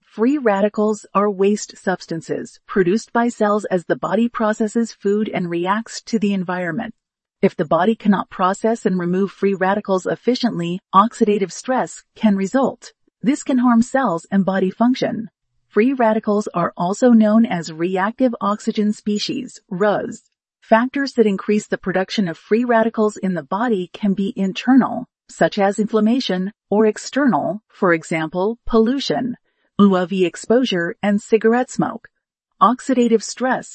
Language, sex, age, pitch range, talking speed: English, female, 40-59, 190-235 Hz, 135 wpm